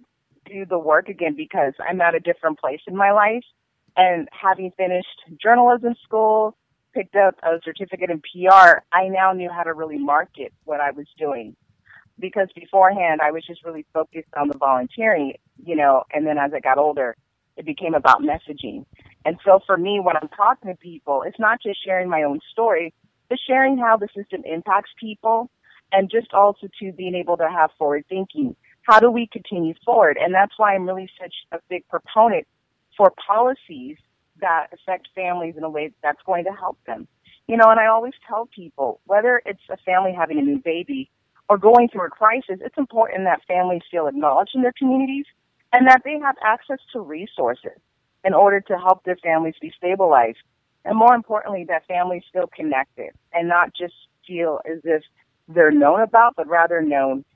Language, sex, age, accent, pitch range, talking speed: English, female, 30-49, American, 160-220 Hz, 190 wpm